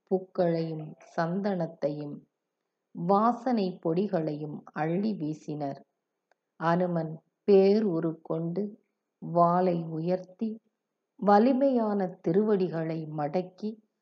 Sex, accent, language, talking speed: female, native, Tamil, 60 wpm